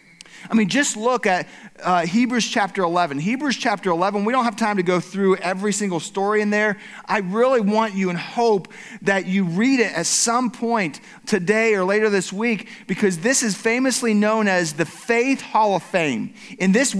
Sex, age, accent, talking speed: male, 40-59, American, 195 wpm